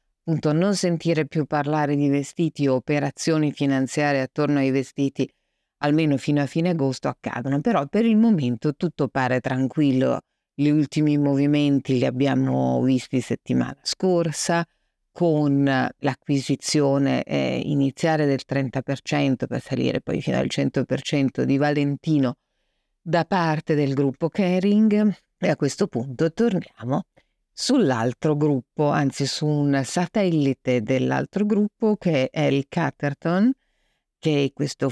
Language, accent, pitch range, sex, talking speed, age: Italian, native, 135-170 Hz, female, 125 wpm, 50-69